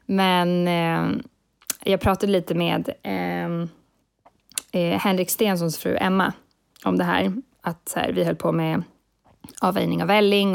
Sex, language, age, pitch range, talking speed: female, English, 20-39, 195-250 Hz, 140 wpm